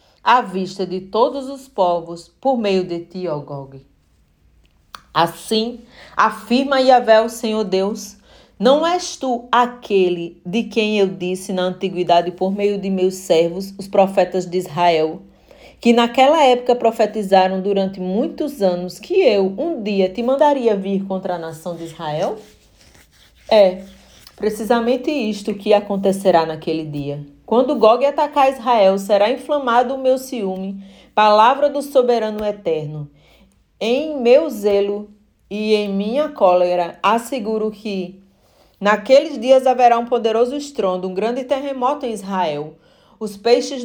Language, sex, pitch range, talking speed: Portuguese, female, 180-245 Hz, 135 wpm